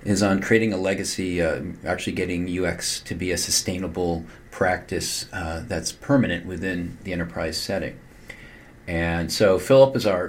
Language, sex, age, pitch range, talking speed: English, male, 40-59, 85-115 Hz, 150 wpm